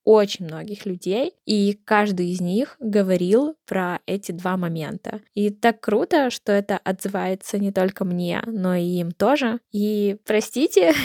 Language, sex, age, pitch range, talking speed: Russian, female, 20-39, 185-225 Hz, 145 wpm